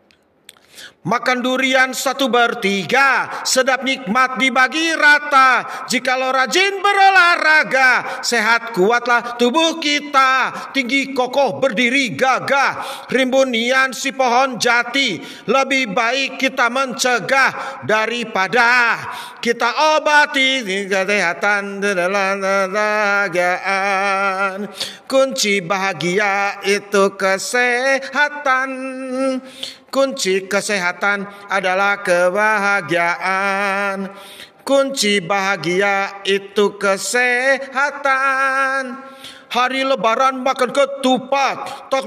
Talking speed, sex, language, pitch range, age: 70 wpm, male, Indonesian, 200-280 Hz, 50-69